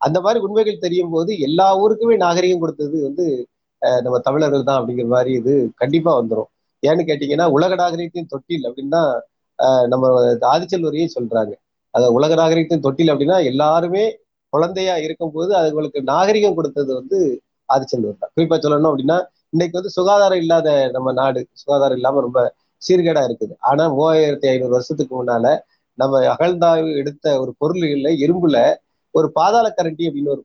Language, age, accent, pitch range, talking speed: Tamil, 30-49, native, 140-185 Hz, 140 wpm